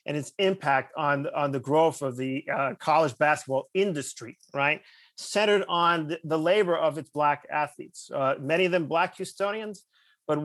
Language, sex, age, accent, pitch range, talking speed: English, male, 30-49, American, 150-200 Hz, 170 wpm